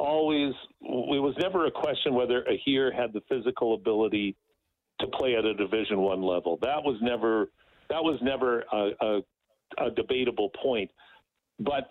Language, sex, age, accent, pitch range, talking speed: English, male, 50-69, American, 115-140 Hz, 160 wpm